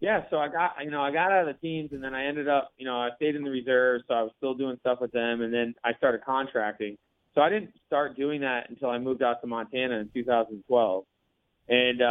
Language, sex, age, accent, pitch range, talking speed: English, male, 20-39, American, 115-145 Hz, 255 wpm